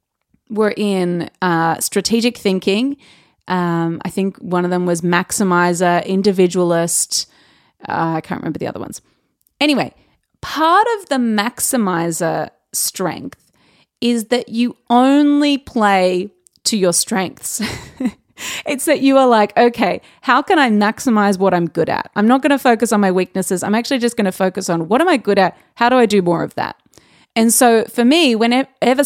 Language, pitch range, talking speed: English, 195-270 Hz, 165 wpm